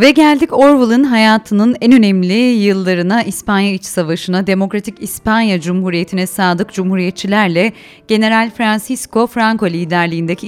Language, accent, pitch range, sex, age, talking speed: Turkish, native, 185-230 Hz, female, 30-49, 110 wpm